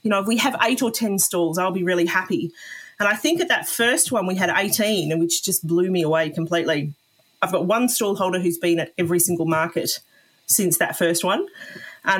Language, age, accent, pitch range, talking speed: English, 30-49, Australian, 170-210 Hz, 230 wpm